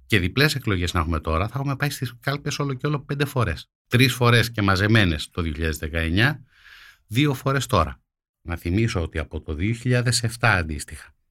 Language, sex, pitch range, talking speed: Greek, male, 85-120 Hz, 170 wpm